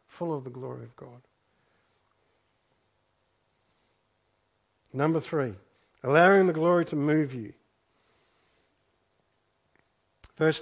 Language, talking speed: English, 85 wpm